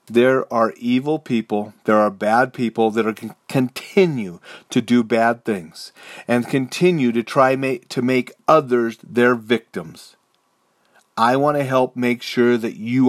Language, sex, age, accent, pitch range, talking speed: English, male, 40-59, American, 120-155 Hz, 155 wpm